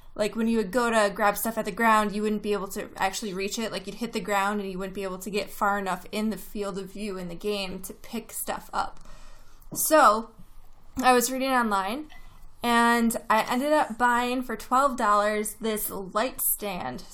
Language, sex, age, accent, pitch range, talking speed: English, female, 20-39, American, 205-240 Hz, 210 wpm